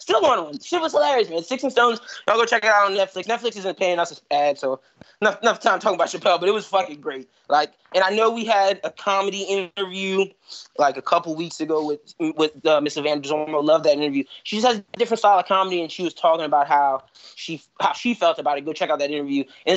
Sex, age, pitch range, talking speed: male, 20-39, 160-245 Hz, 250 wpm